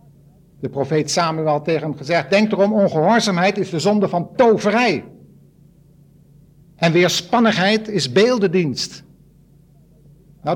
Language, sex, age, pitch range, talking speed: Dutch, male, 60-79, 150-200 Hz, 115 wpm